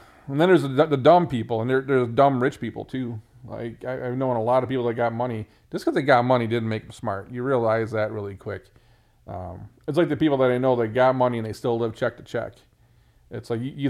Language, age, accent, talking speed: English, 40-59, American, 245 wpm